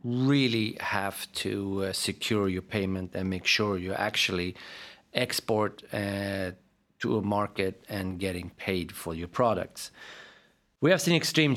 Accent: Swedish